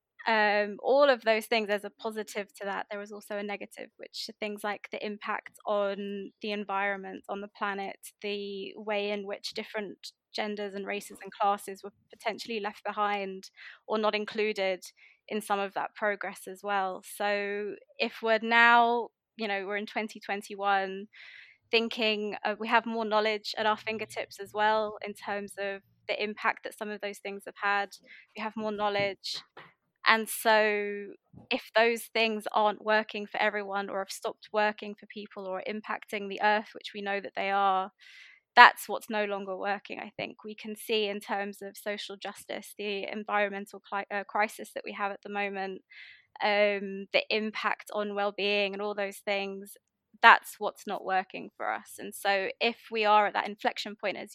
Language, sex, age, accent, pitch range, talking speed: English, female, 20-39, British, 200-215 Hz, 180 wpm